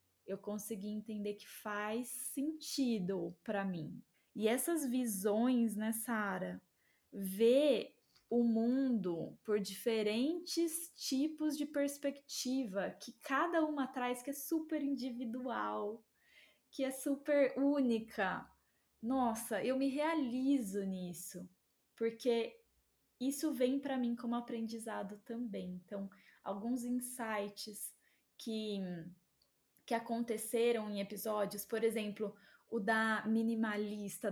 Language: Portuguese